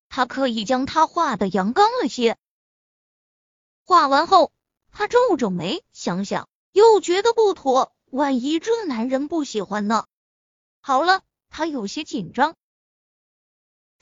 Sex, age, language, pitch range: female, 20-39, Chinese, 235-355 Hz